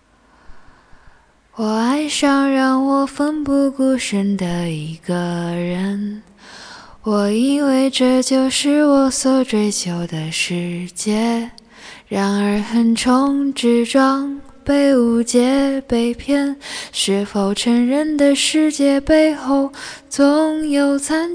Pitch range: 210-280 Hz